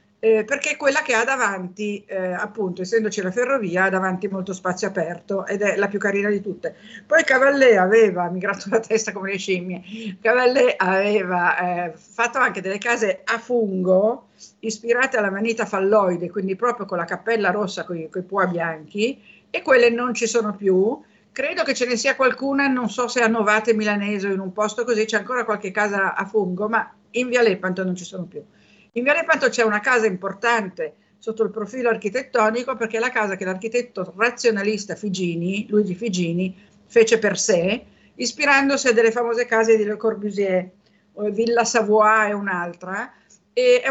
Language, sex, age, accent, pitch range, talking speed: Italian, female, 50-69, native, 195-240 Hz, 180 wpm